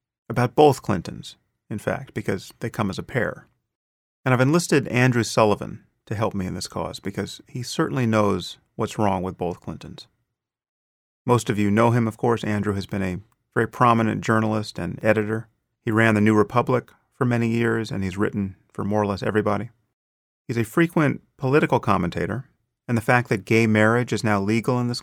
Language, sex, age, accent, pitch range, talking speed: English, male, 40-59, American, 105-125 Hz, 190 wpm